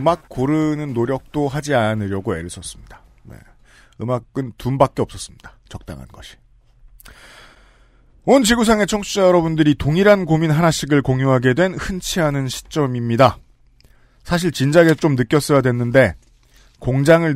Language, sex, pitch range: Korean, male, 115-170 Hz